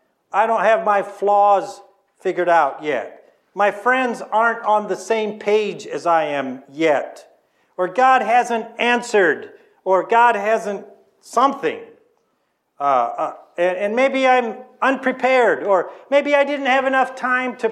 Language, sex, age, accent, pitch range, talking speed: English, male, 50-69, American, 180-245 Hz, 140 wpm